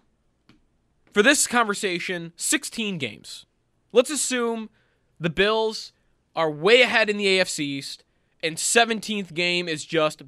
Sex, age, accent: male, 20-39, American